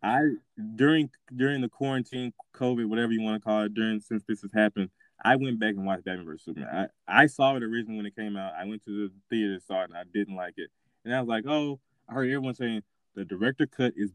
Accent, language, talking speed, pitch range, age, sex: American, English, 255 wpm, 100-120 Hz, 20-39, male